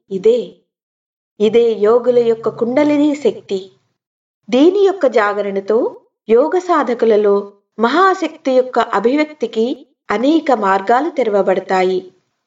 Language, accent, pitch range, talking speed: Telugu, native, 210-275 Hz, 65 wpm